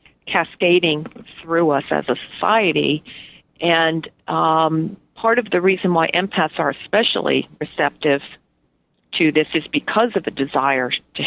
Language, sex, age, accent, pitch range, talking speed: English, female, 50-69, American, 150-180 Hz, 135 wpm